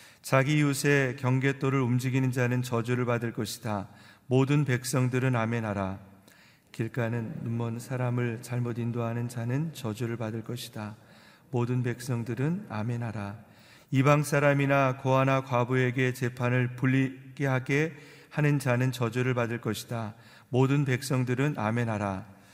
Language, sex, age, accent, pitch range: Korean, male, 40-59, native, 115-130 Hz